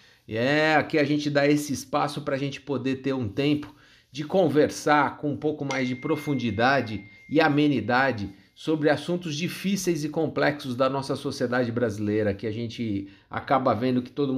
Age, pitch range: 50-69, 115-145 Hz